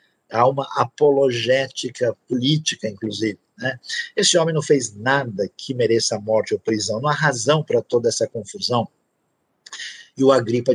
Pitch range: 120-195 Hz